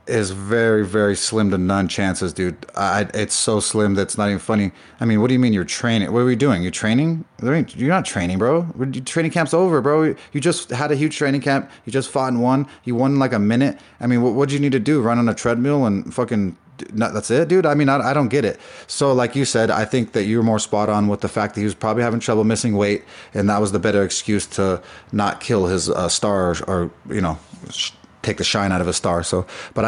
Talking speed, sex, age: 255 wpm, male, 30-49